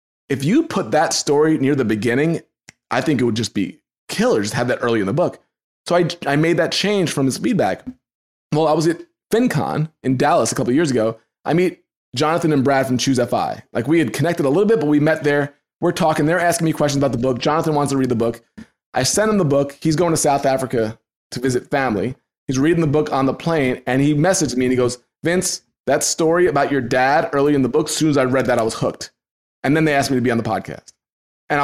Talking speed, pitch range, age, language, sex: 255 wpm, 130-165 Hz, 20-39, English, male